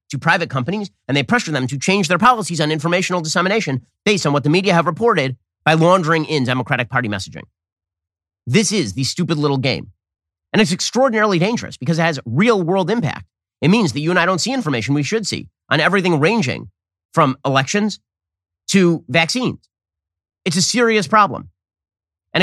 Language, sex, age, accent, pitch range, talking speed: English, male, 30-49, American, 110-175 Hz, 180 wpm